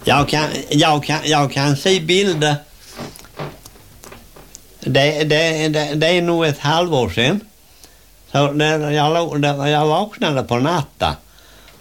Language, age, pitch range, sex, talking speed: English, 60-79, 145-180 Hz, male, 125 wpm